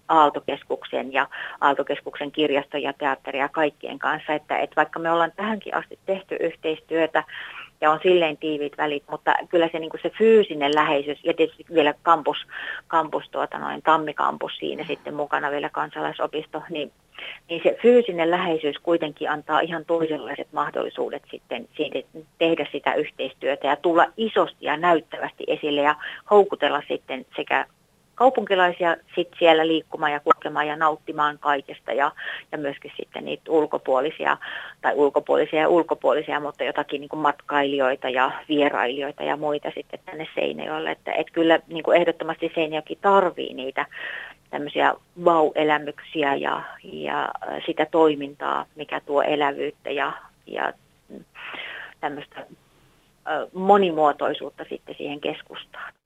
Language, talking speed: Finnish, 125 wpm